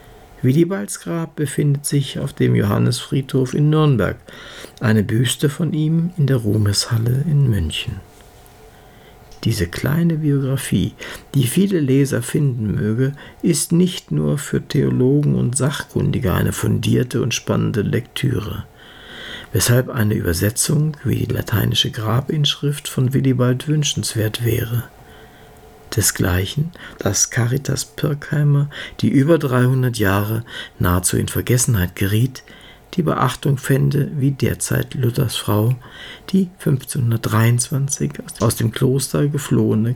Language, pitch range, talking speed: German, 110-145 Hz, 110 wpm